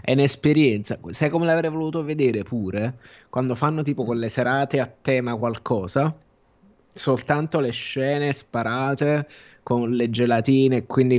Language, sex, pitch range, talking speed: Italian, male, 110-130 Hz, 135 wpm